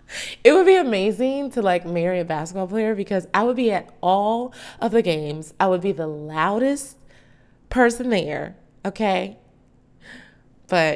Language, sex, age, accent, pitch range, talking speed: English, female, 20-39, American, 160-220 Hz, 155 wpm